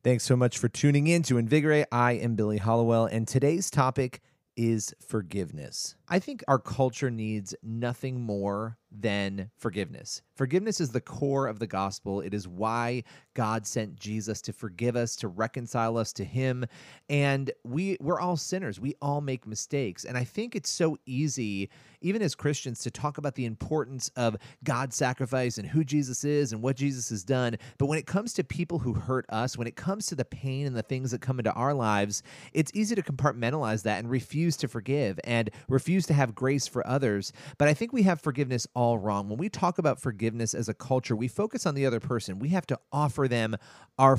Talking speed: 200 wpm